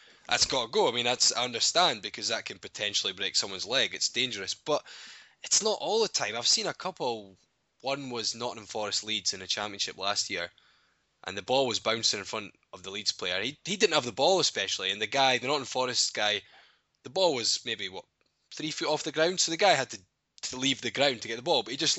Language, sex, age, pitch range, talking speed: English, male, 10-29, 115-150 Hz, 245 wpm